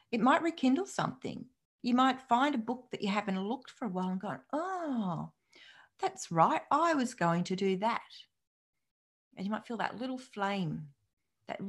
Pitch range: 165-235 Hz